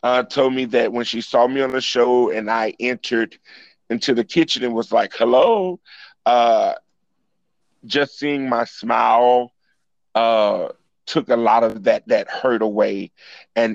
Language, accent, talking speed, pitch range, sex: English, American, 155 wpm, 110-135 Hz, male